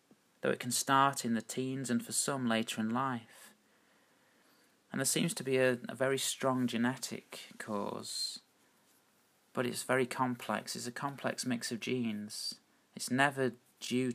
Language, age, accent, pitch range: English, 30-49, British, 115-135 Hz